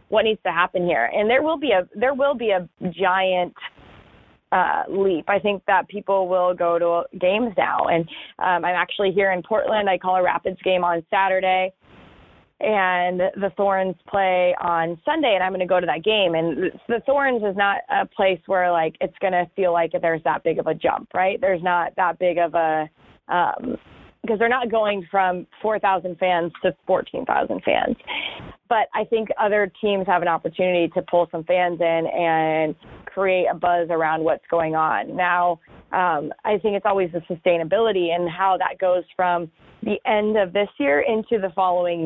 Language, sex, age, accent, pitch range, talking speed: English, female, 20-39, American, 170-195 Hz, 190 wpm